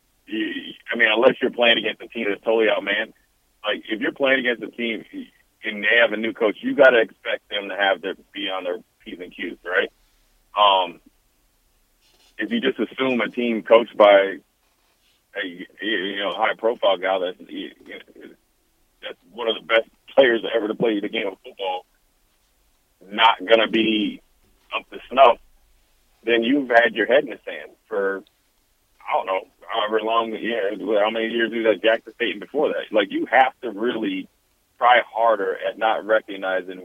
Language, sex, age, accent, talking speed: English, male, 40-59, American, 180 wpm